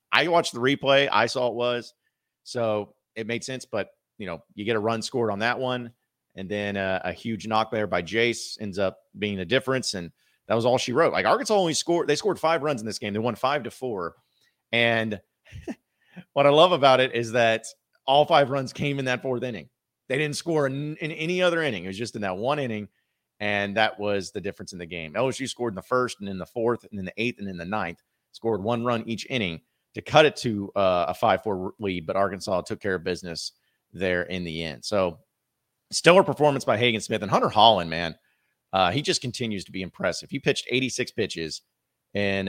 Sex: male